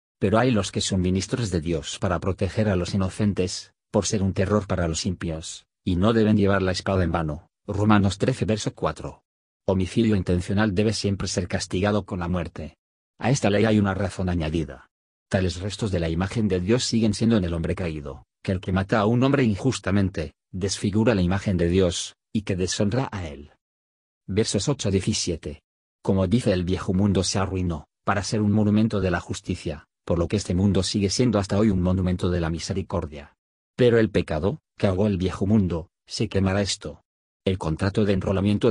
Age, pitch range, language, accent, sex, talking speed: 40-59, 90-110 Hz, Spanish, Spanish, male, 190 wpm